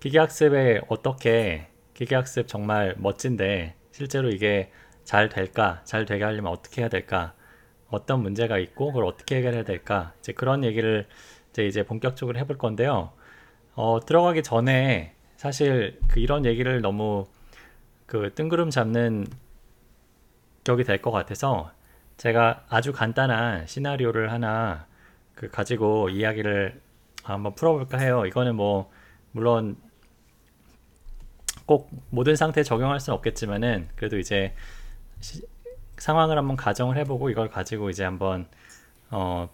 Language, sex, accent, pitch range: Korean, male, native, 100-130 Hz